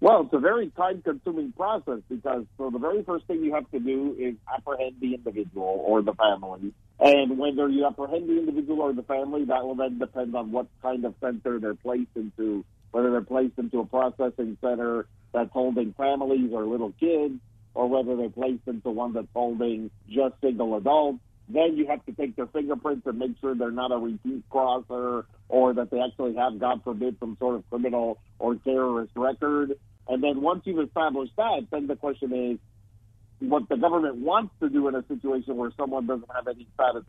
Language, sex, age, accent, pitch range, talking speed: English, male, 50-69, American, 115-140 Hz, 195 wpm